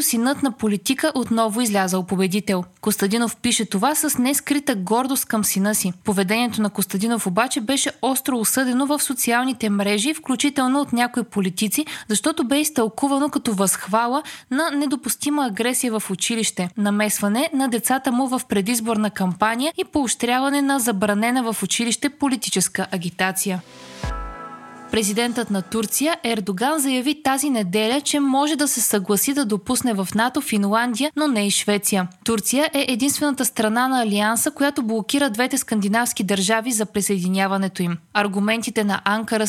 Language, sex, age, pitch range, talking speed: Bulgarian, female, 20-39, 205-270 Hz, 140 wpm